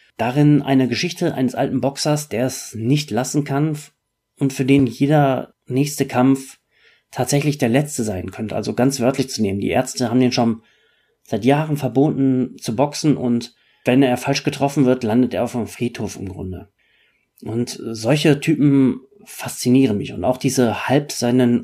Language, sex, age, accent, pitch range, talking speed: German, male, 30-49, German, 110-135 Hz, 165 wpm